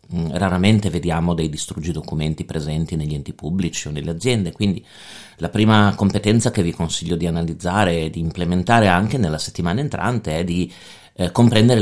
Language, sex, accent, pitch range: Italian, male, native, 85-105 Hz